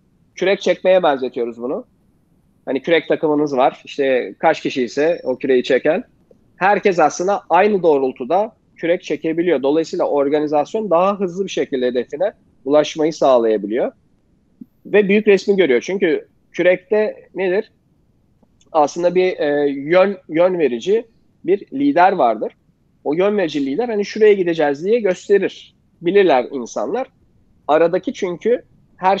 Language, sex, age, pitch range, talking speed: Turkish, male, 40-59, 145-200 Hz, 125 wpm